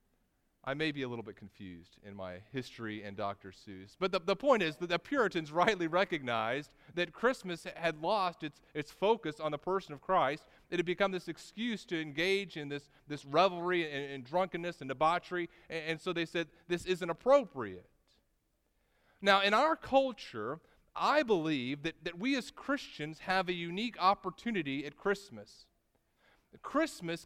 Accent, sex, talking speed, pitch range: American, male, 170 wpm, 155-215 Hz